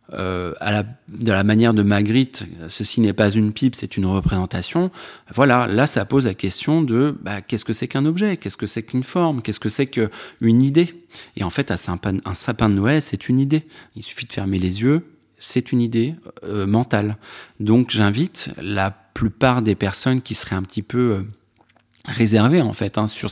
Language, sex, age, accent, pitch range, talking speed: French, male, 30-49, French, 105-130 Hz, 200 wpm